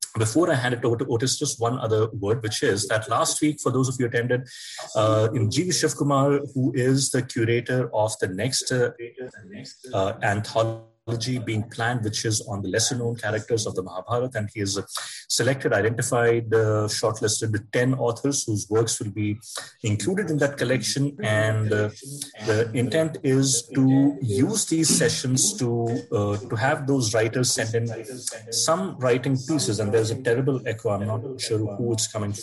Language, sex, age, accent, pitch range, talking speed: English, male, 30-49, Indian, 110-135 Hz, 175 wpm